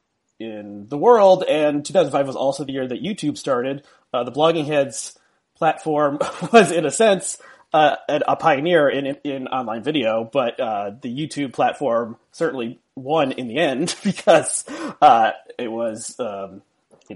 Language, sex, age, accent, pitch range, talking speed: English, male, 30-49, American, 120-160 Hz, 170 wpm